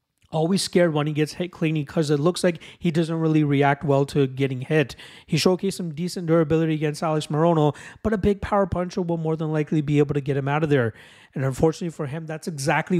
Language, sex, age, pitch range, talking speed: English, male, 30-49, 140-170 Hz, 230 wpm